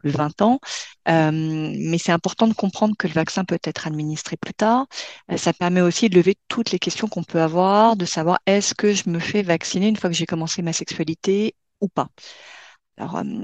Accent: French